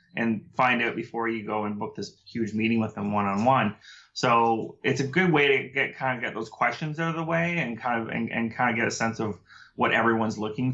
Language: English